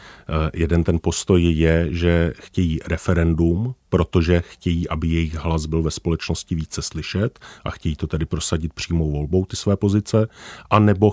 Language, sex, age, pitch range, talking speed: Czech, male, 40-59, 80-90 Hz, 150 wpm